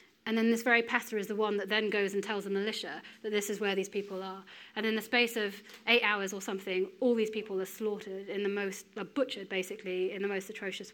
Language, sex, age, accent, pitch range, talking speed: English, female, 30-49, British, 195-225 Hz, 250 wpm